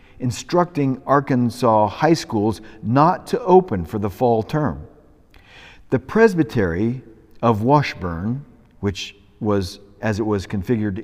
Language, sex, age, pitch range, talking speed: English, male, 50-69, 100-130 Hz, 115 wpm